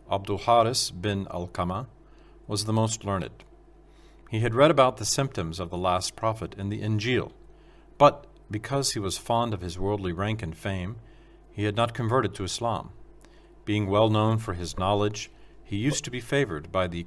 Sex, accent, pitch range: male, American, 95-120 Hz